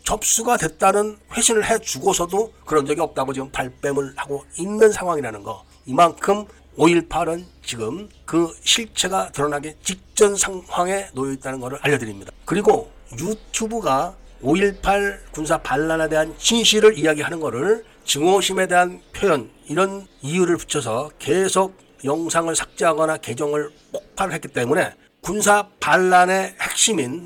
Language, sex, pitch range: Korean, male, 145-195 Hz